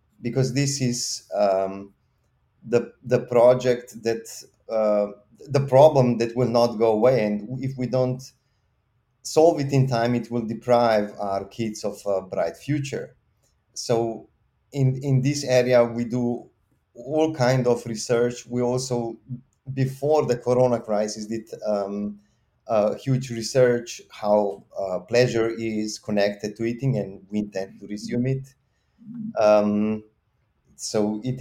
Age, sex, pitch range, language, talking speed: 30-49, male, 105-125 Hz, English, 135 wpm